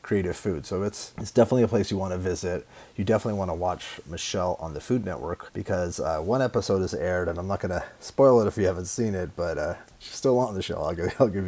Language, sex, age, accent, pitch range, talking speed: English, male, 30-49, American, 90-105 Hz, 265 wpm